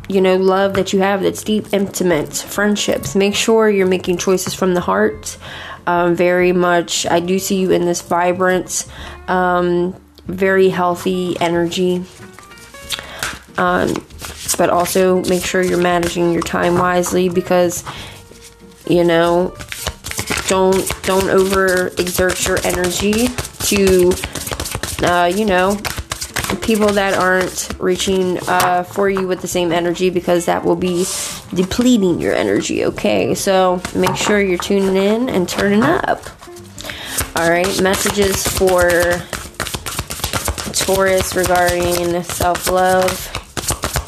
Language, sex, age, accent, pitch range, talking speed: English, female, 20-39, American, 175-195 Hz, 125 wpm